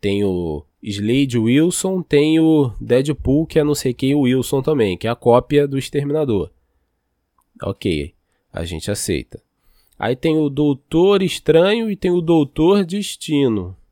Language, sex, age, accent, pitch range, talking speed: Portuguese, male, 20-39, Brazilian, 100-145 Hz, 150 wpm